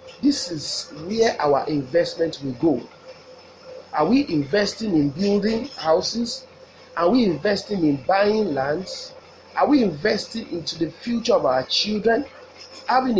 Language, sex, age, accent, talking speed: English, male, 40-59, Nigerian, 130 wpm